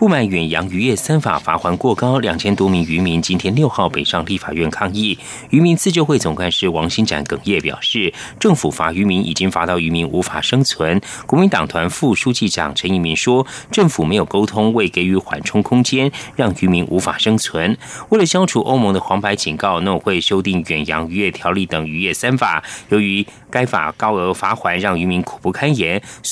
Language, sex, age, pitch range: Chinese, male, 30-49, 90-125 Hz